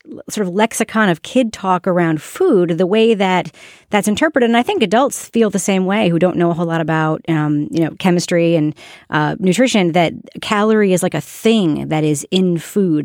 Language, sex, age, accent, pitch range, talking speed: English, female, 30-49, American, 165-215 Hz, 205 wpm